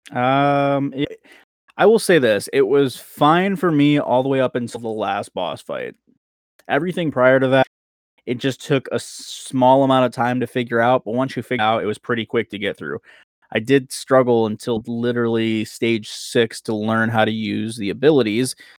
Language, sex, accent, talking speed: English, male, American, 190 wpm